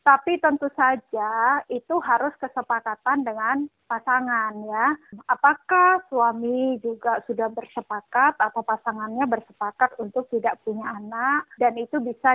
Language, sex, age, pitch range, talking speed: Indonesian, female, 20-39, 235-310 Hz, 115 wpm